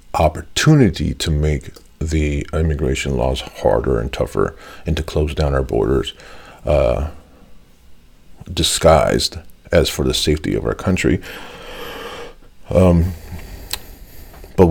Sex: male